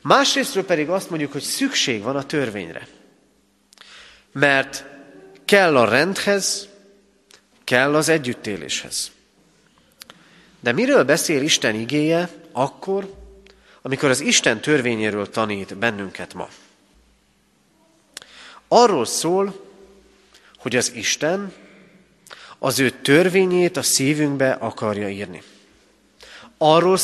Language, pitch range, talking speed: Hungarian, 130-195 Hz, 95 wpm